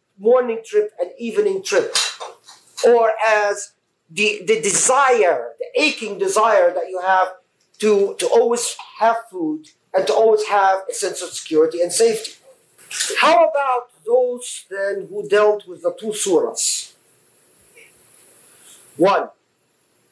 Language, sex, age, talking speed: English, male, 50-69, 125 wpm